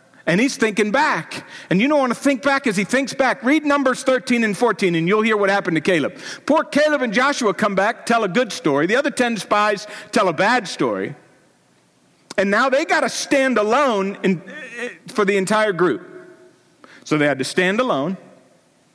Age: 50-69